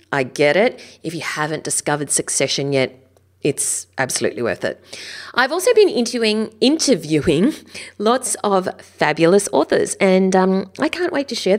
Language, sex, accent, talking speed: English, female, Australian, 145 wpm